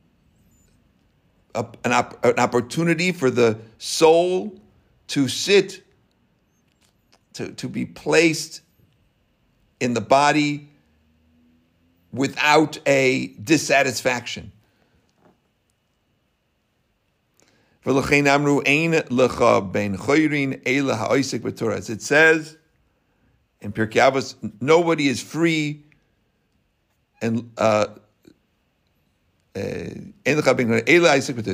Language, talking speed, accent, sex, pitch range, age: English, 60 wpm, American, male, 110-150 Hz, 60-79